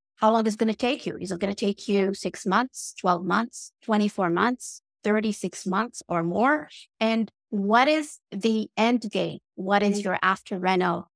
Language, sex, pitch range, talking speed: English, female, 185-245 Hz, 185 wpm